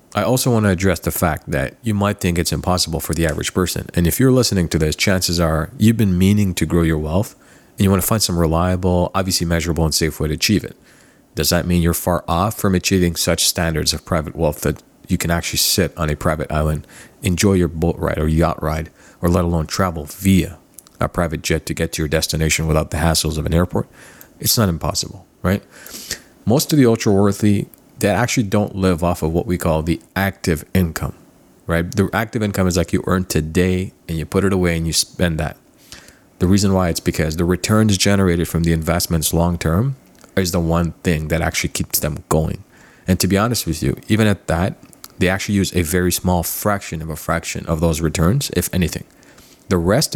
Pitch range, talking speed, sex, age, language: 80-95 Hz, 215 wpm, male, 40-59, English